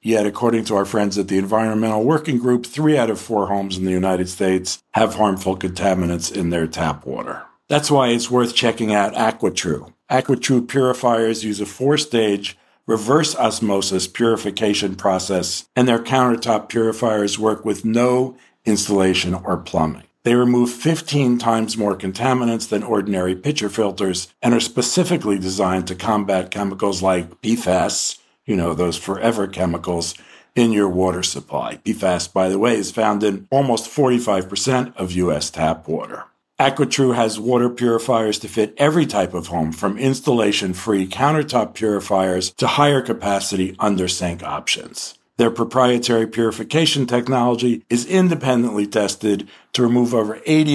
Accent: American